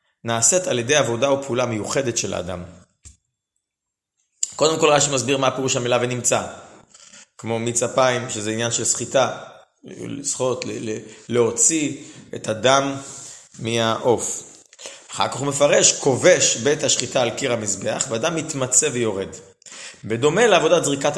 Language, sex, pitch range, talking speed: Hebrew, male, 115-145 Hz, 130 wpm